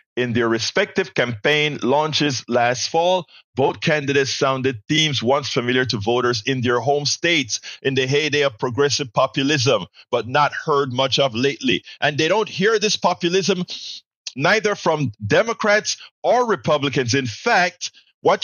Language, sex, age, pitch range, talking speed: English, male, 50-69, 115-175 Hz, 145 wpm